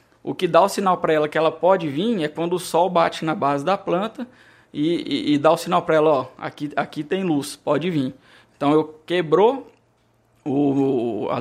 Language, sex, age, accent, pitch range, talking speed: Portuguese, male, 20-39, Brazilian, 145-175 Hz, 210 wpm